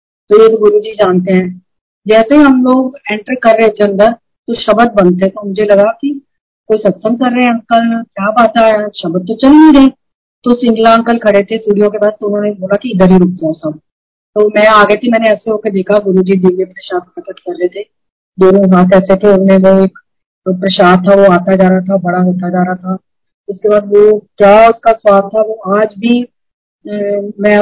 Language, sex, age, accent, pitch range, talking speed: Hindi, female, 40-59, native, 195-230 Hz, 215 wpm